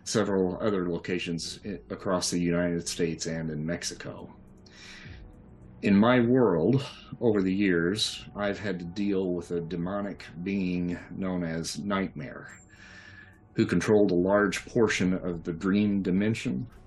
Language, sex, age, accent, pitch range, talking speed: English, male, 40-59, American, 90-100 Hz, 130 wpm